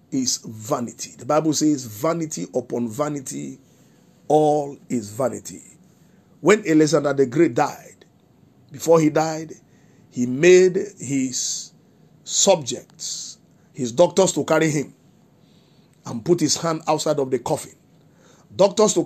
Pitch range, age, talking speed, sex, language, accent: 140-185 Hz, 50-69, 120 wpm, male, English, Nigerian